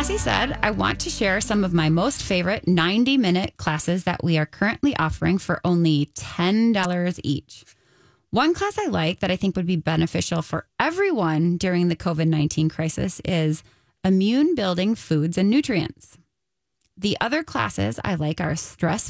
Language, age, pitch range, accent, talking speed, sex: English, 20-39, 165-225 Hz, American, 160 wpm, female